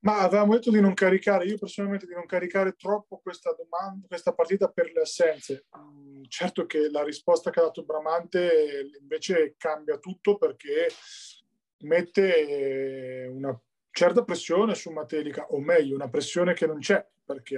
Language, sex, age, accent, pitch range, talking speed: Italian, male, 30-49, native, 145-200 Hz, 155 wpm